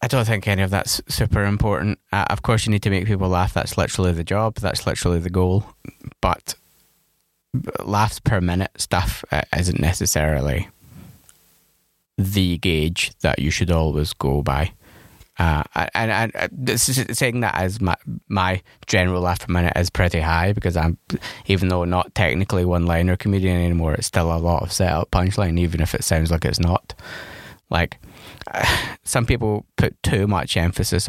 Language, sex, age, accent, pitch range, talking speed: Finnish, male, 20-39, British, 85-100 Hz, 175 wpm